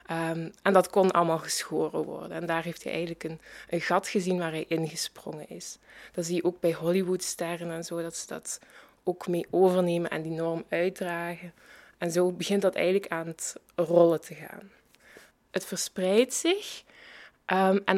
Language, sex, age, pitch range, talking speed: Dutch, female, 20-39, 175-205 Hz, 165 wpm